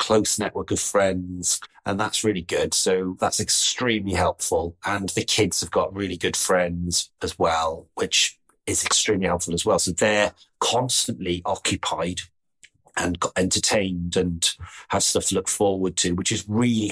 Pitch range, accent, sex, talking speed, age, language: 90-110 Hz, British, male, 155 wpm, 30-49, English